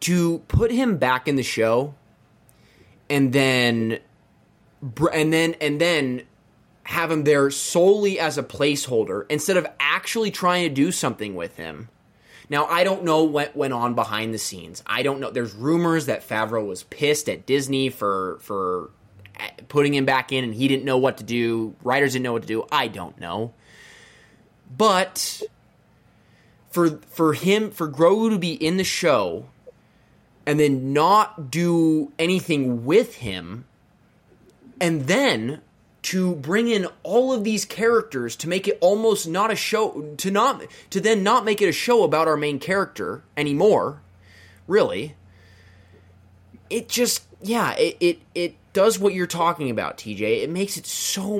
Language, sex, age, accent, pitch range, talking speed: English, male, 20-39, American, 120-180 Hz, 160 wpm